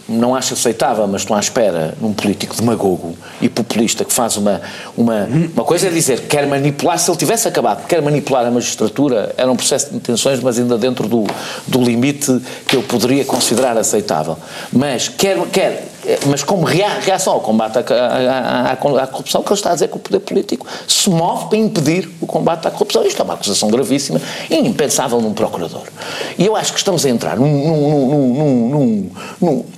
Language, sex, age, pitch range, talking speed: Portuguese, male, 50-69, 135-200 Hz, 200 wpm